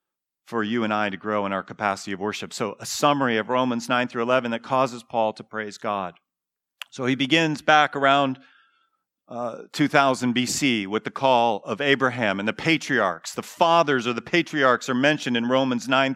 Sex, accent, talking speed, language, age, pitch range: male, American, 190 wpm, Russian, 40-59, 135-180 Hz